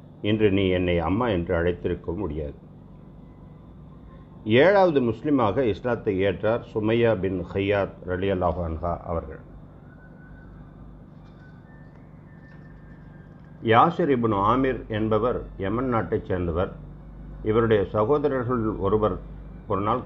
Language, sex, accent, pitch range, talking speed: Tamil, male, native, 95-125 Hz, 85 wpm